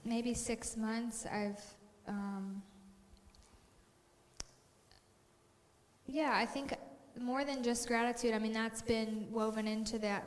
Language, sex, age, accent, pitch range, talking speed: English, female, 10-29, American, 200-230 Hz, 110 wpm